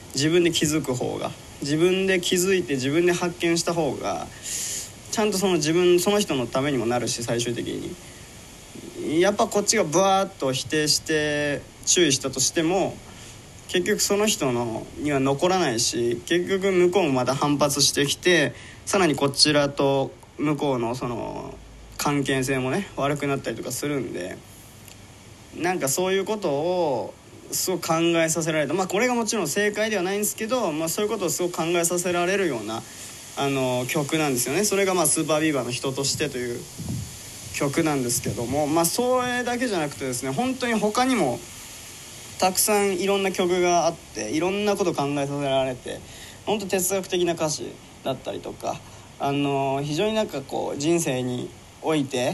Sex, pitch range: male, 135-190 Hz